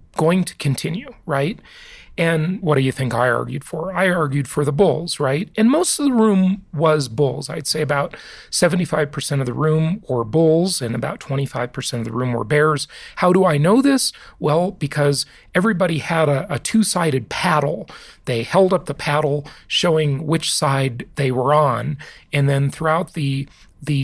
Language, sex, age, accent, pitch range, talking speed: English, male, 40-59, American, 135-175 Hz, 175 wpm